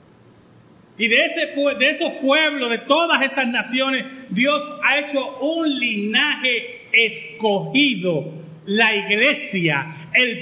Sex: male